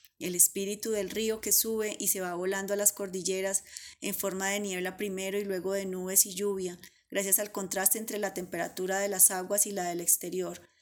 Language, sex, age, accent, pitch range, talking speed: Spanish, female, 20-39, Colombian, 185-210 Hz, 205 wpm